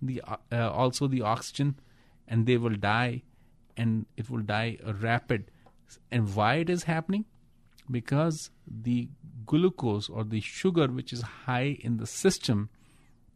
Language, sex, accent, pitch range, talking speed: English, male, Indian, 110-125 Hz, 140 wpm